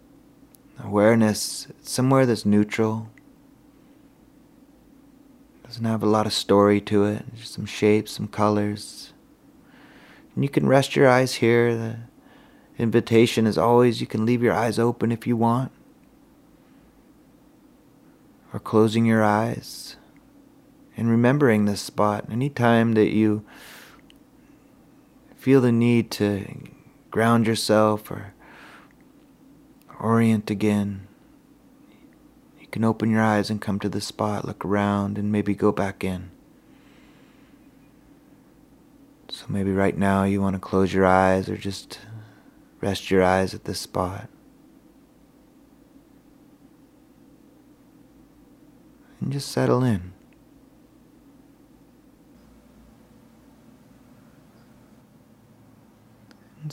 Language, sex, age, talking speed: English, male, 30-49, 105 wpm